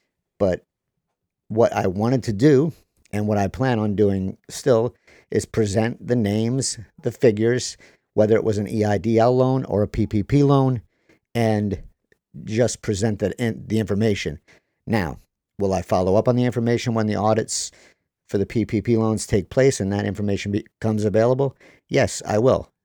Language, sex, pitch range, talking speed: English, male, 100-120 Hz, 155 wpm